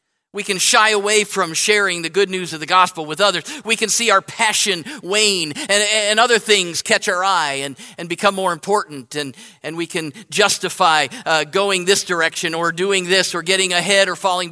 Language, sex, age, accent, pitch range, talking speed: English, male, 50-69, American, 160-200 Hz, 205 wpm